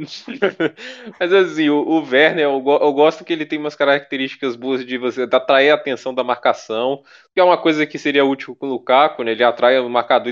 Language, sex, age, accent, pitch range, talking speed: Portuguese, male, 20-39, Brazilian, 125-160 Hz, 205 wpm